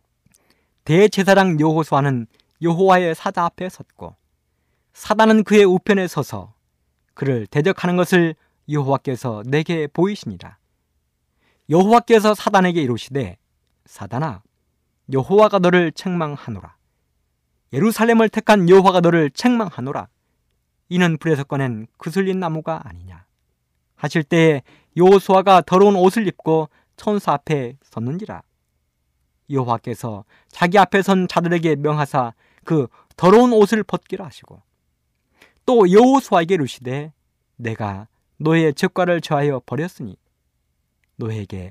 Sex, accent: male, native